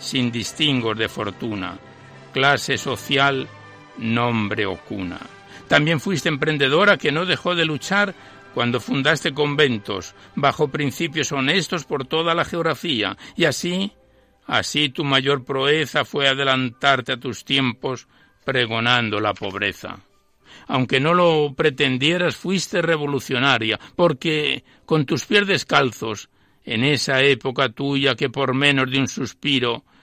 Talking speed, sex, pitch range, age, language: 125 wpm, male, 125-160 Hz, 60-79, Spanish